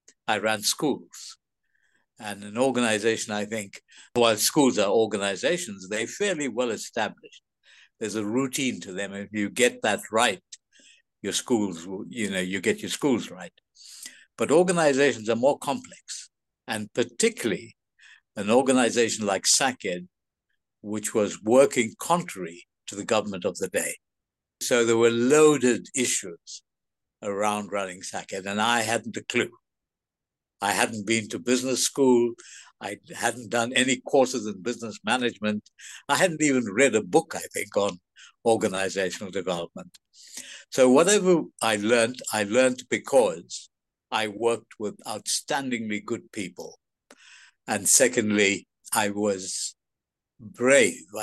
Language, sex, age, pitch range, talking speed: English, male, 60-79, 105-125 Hz, 130 wpm